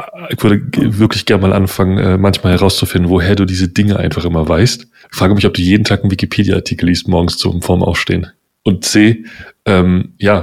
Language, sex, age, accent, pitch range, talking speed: German, male, 30-49, German, 90-100 Hz, 190 wpm